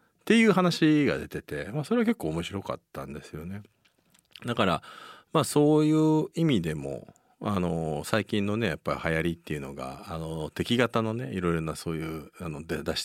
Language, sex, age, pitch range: Japanese, male, 40-59, 80-130 Hz